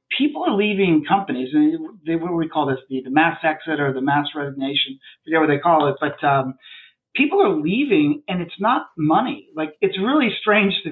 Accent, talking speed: American, 205 wpm